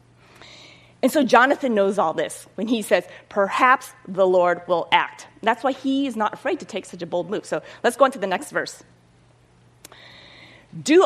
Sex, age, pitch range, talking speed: female, 30-49, 175-260 Hz, 190 wpm